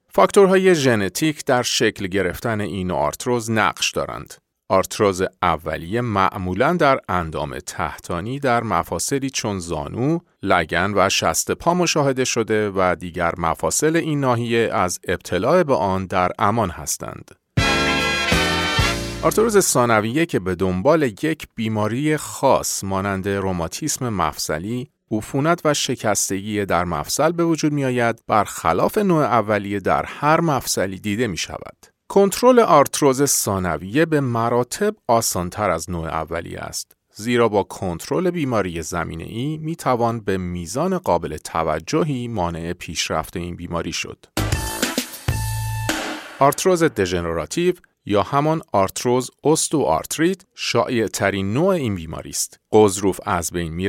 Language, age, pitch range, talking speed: Persian, 40-59, 90-145 Hz, 125 wpm